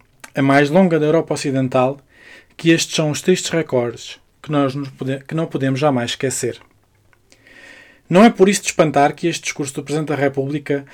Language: Portuguese